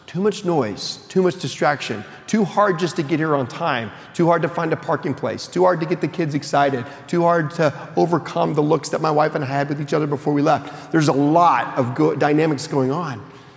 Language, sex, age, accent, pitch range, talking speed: English, male, 40-59, American, 135-170 Hz, 235 wpm